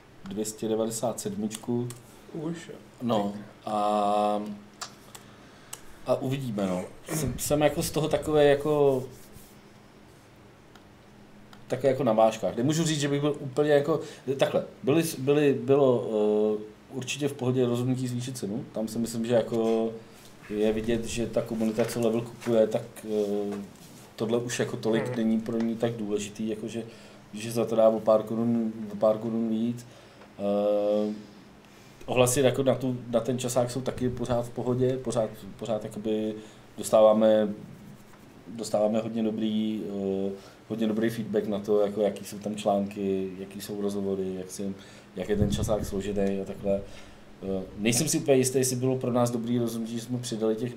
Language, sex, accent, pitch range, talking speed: Czech, male, native, 105-125 Hz, 150 wpm